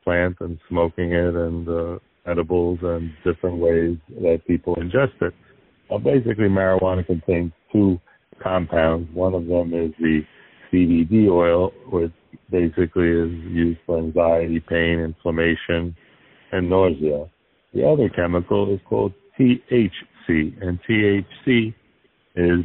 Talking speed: 120 wpm